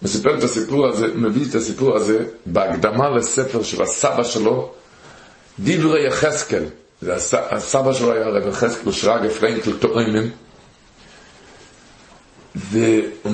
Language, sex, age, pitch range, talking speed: Hebrew, male, 50-69, 105-135 Hz, 110 wpm